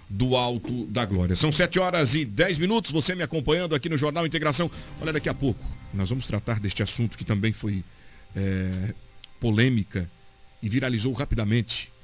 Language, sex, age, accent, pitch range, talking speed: Portuguese, male, 50-69, Brazilian, 105-130 Hz, 165 wpm